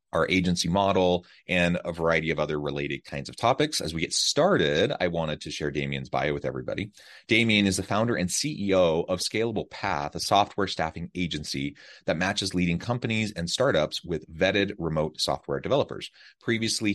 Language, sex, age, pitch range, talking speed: English, male, 30-49, 75-95 Hz, 175 wpm